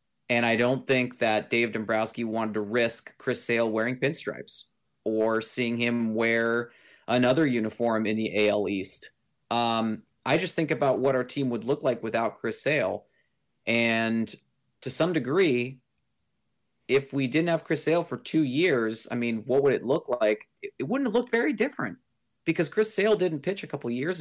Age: 30-49